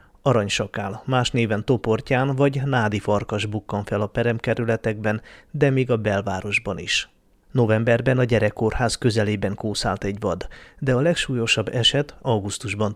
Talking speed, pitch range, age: 130 wpm, 110-125 Hz, 30-49